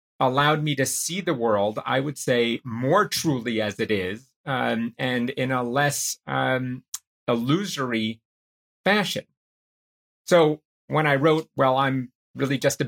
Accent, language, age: American, English, 30-49